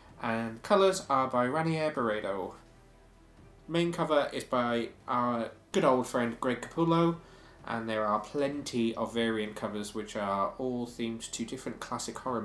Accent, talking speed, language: British, 150 wpm, English